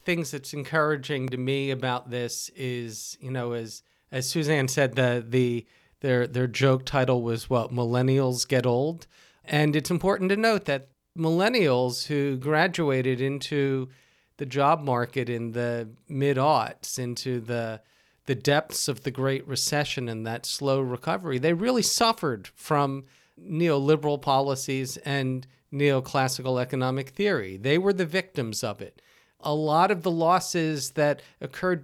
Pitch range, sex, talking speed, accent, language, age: 125-160 Hz, male, 145 wpm, American, English, 40-59